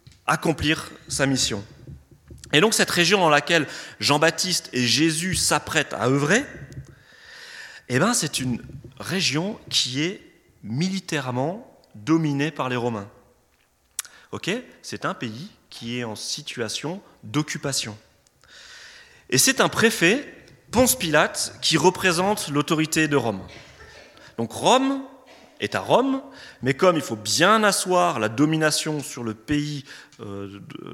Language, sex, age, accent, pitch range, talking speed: French, male, 30-49, French, 115-175 Hz, 125 wpm